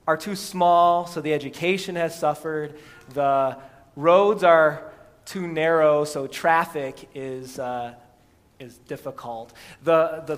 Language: English